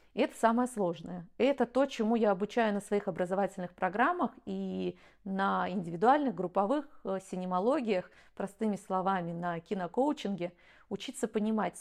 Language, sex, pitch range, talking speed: Russian, female, 195-250 Hz, 115 wpm